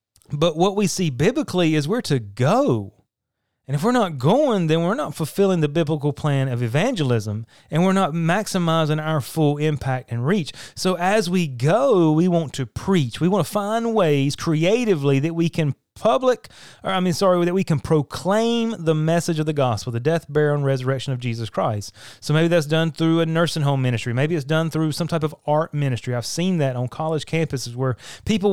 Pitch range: 135-185 Hz